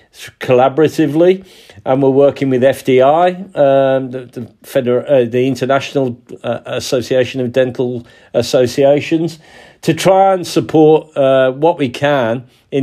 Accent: British